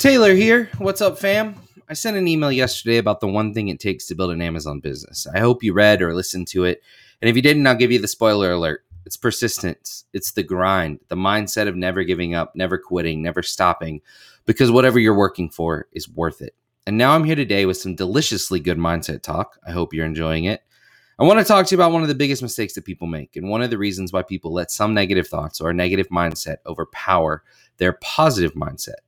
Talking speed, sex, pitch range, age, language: 230 wpm, male, 90-120 Hz, 30-49, English